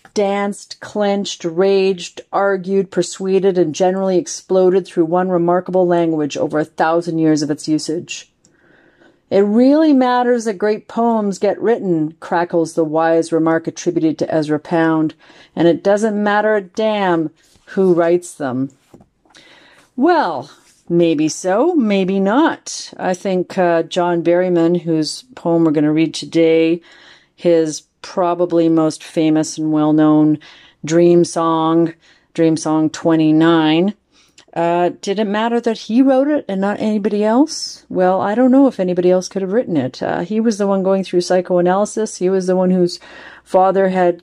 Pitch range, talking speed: 165-195 Hz, 150 wpm